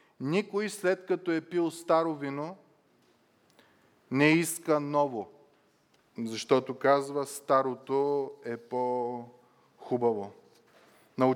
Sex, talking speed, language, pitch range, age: male, 85 wpm, Bulgarian, 130-165 Hz, 20-39